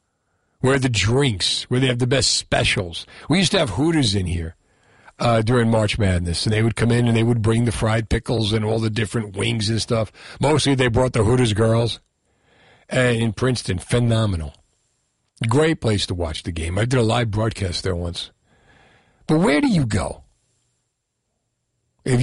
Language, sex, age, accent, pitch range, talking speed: English, male, 50-69, American, 105-130 Hz, 180 wpm